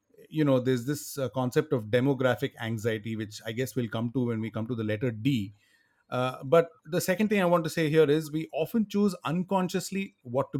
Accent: Indian